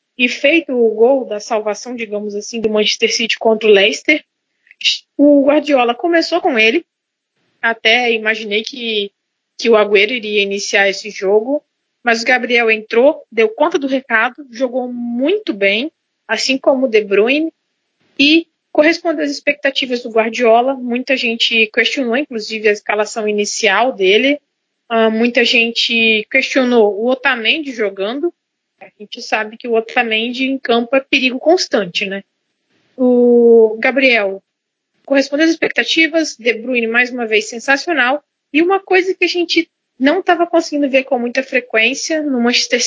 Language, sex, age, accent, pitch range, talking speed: English, female, 20-39, Brazilian, 225-290 Hz, 145 wpm